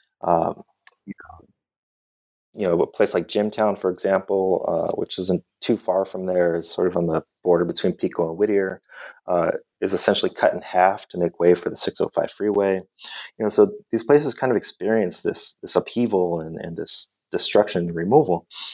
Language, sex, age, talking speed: English, male, 30-49, 190 wpm